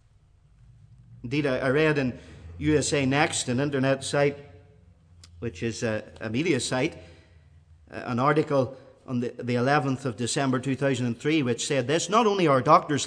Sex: male